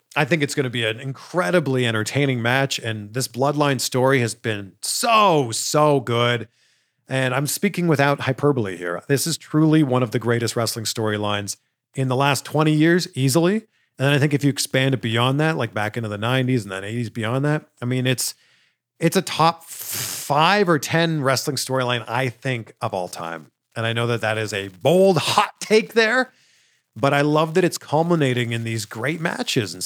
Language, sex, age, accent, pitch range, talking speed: English, male, 40-59, American, 115-150 Hz, 195 wpm